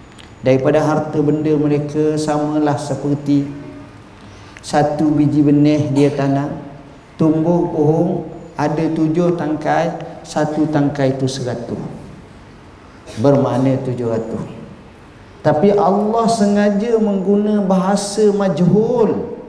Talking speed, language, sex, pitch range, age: 90 wpm, Malay, male, 130-195 Hz, 50-69